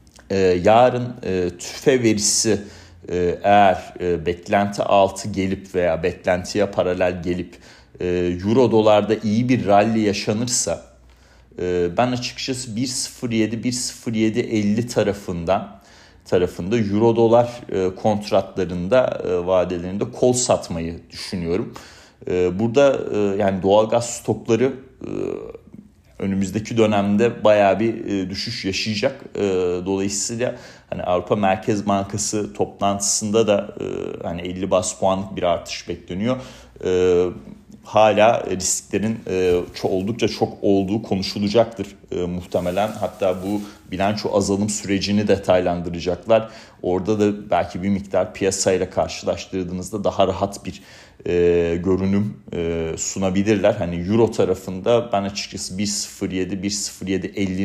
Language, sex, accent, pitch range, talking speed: Turkish, male, native, 95-110 Hz, 100 wpm